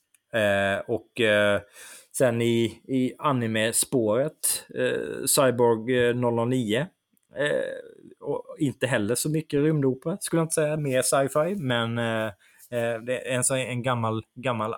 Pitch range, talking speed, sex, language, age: 105-130 Hz, 130 wpm, male, Swedish, 20-39